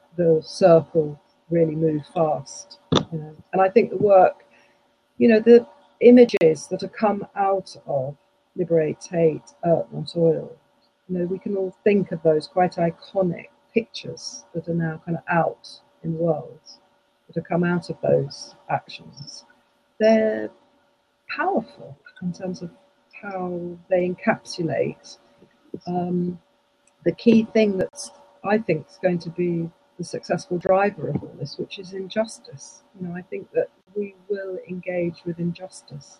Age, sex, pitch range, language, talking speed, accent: 50-69, female, 165-190 Hz, English, 150 wpm, British